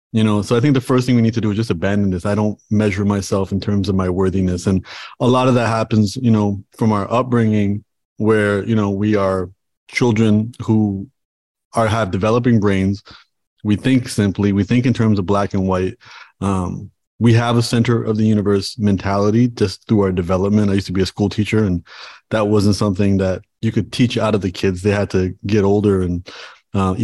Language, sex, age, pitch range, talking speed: English, male, 30-49, 100-115 Hz, 215 wpm